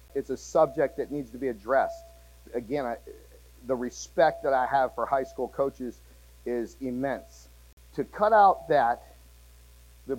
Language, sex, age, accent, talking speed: English, male, 50-69, American, 155 wpm